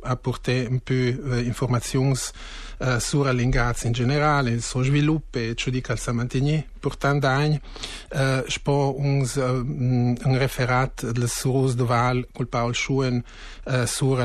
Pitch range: 120-140 Hz